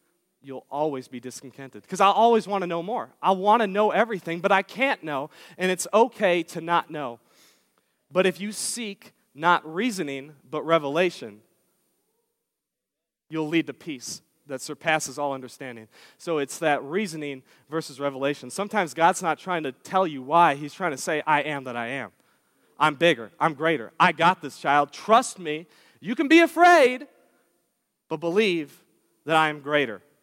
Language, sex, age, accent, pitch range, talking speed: English, male, 30-49, American, 155-205 Hz, 170 wpm